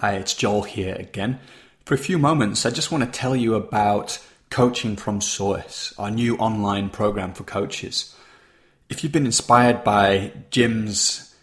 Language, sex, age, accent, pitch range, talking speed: English, male, 30-49, British, 105-125 Hz, 165 wpm